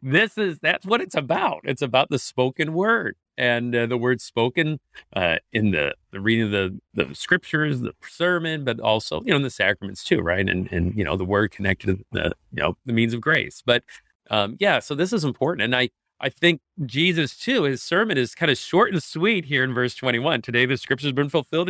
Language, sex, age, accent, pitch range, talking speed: English, male, 40-59, American, 110-160 Hz, 225 wpm